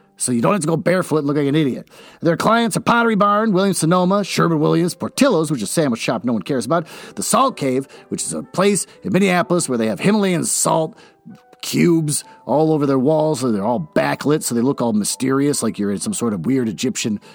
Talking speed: 230 wpm